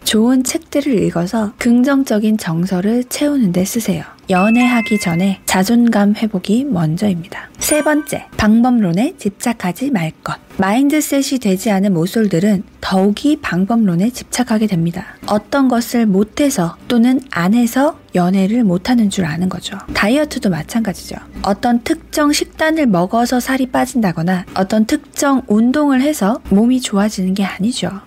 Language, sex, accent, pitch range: Korean, female, native, 190-260 Hz